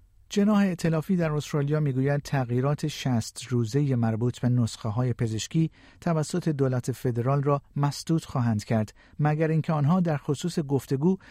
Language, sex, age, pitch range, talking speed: Persian, male, 50-69, 110-145 Hz, 145 wpm